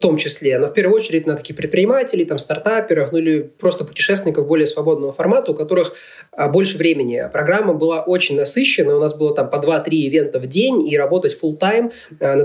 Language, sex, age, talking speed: Russian, male, 20-39, 200 wpm